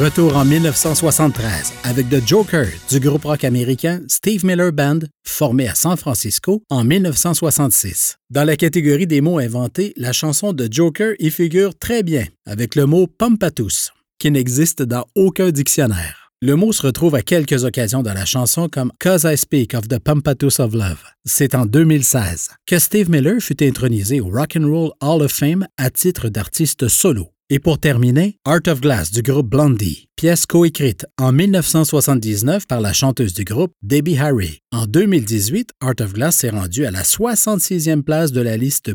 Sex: male